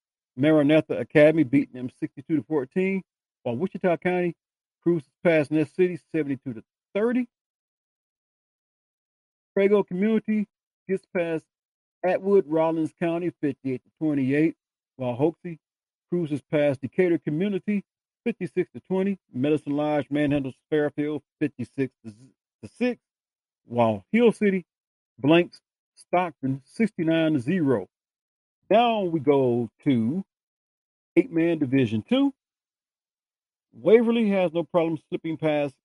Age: 40-59